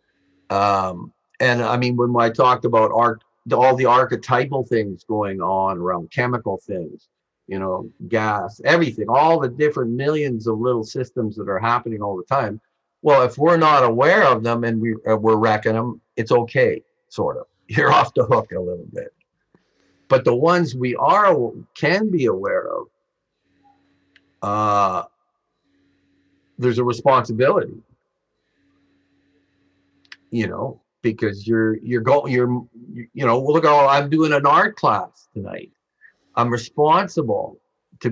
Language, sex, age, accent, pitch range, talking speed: English, male, 50-69, American, 110-135 Hz, 140 wpm